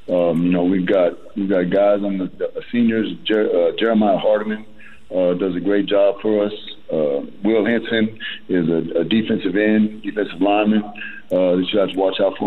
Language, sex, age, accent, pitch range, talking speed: English, male, 50-69, American, 100-120 Hz, 195 wpm